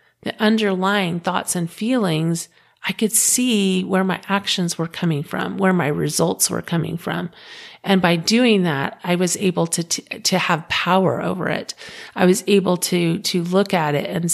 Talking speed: 180 wpm